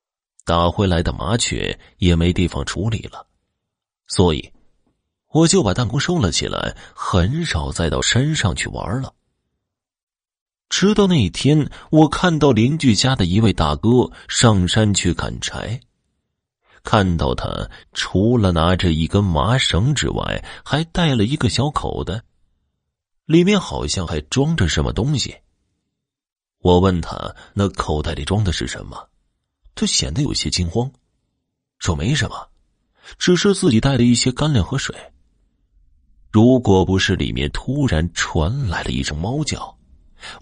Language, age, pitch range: Chinese, 30-49, 80-125 Hz